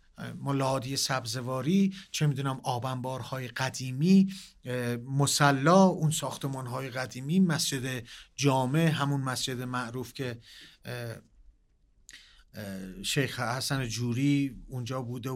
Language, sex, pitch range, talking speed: Persian, male, 125-170 Hz, 90 wpm